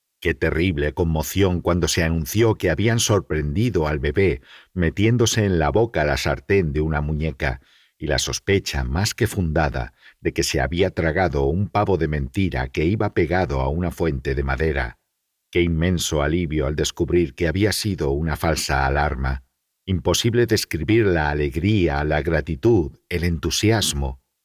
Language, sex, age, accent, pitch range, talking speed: Spanish, male, 60-79, Spanish, 70-95 Hz, 150 wpm